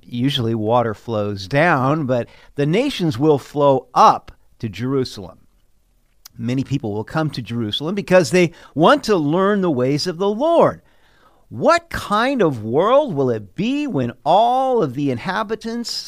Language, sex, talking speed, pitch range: English, male, 150 wpm, 115-180 Hz